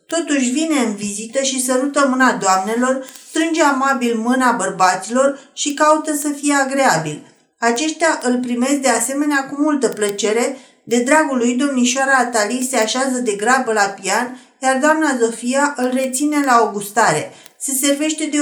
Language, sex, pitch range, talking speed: Romanian, female, 230-275 Hz, 150 wpm